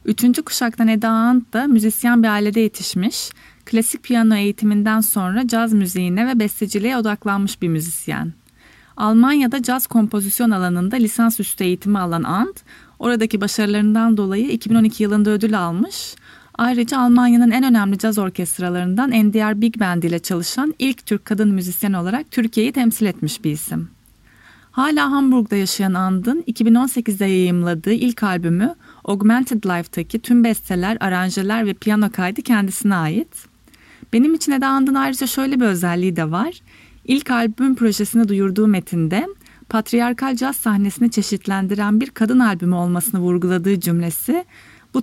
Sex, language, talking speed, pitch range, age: female, Turkish, 135 wpm, 190-245 Hz, 30-49